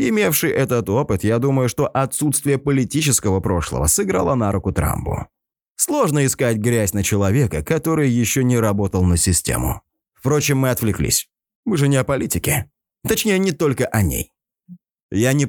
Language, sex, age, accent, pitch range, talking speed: Russian, male, 20-39, native, 105-145 Hz, 150 wpm